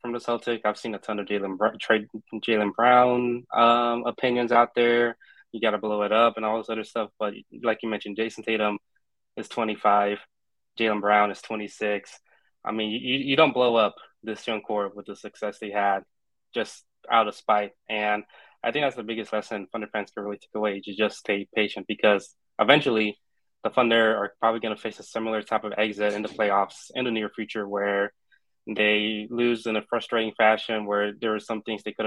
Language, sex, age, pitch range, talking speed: English, male, 20-39, 105-115 Hz, 200 wpm